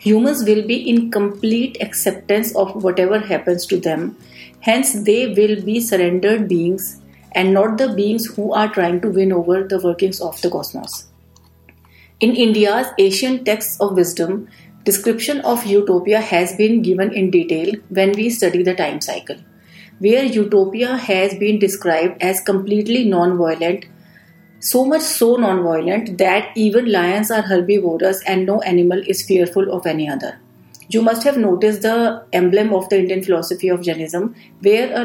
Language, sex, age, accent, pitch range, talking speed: Hindi, female, 40-59, native, 180-215 Hz, 155 wpm